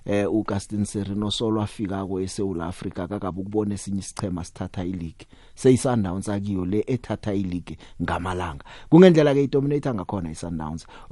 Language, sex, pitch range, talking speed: English, male, 90-115 Hz, 115 wpm